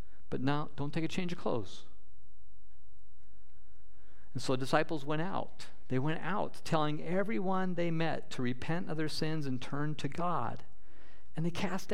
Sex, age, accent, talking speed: male, 50-69, American, 160 wpm